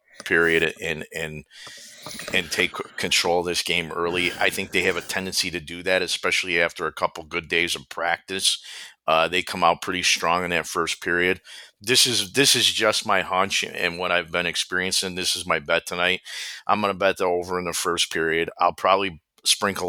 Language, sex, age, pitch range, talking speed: English, male, 40-59, 80-90 Hz, 200 wpm